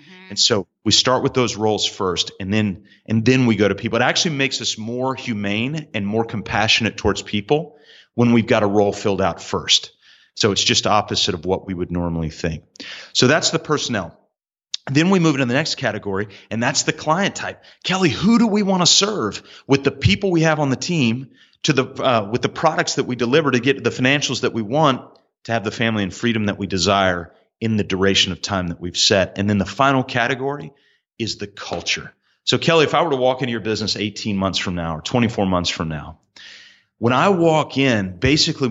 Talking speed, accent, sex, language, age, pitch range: 220 wpm, American, male, English, 30-49, 100-140 Hz